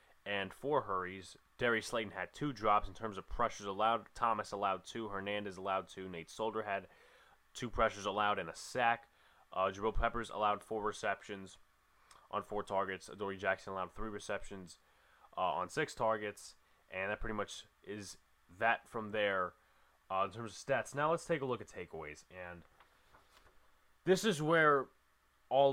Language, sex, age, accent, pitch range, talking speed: English, male, 20-39, American, 100-130 Hz, 165 wpm